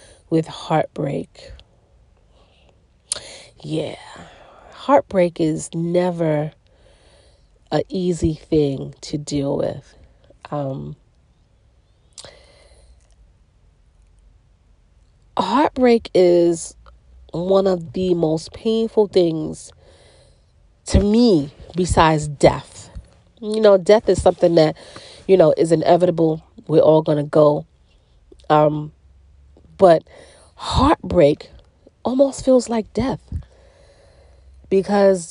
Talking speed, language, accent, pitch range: 80 wpm, English, American, 145-215 Hz